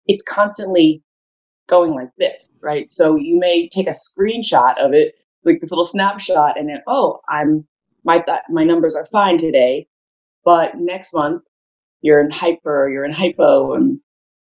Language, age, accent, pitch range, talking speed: English, 20-39, American, 155-200 Hz, 160 wpm